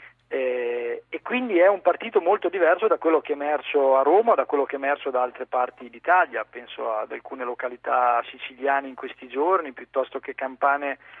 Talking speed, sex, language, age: 180 wpm, male, Italian, 40-59